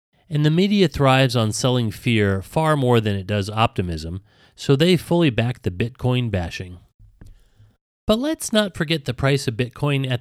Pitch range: 105-140 Hz